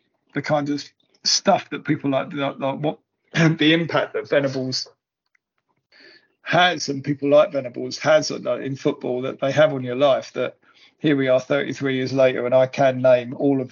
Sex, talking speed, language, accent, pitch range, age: male, 175 wpm, English, British, 130-165 Hz, 50-69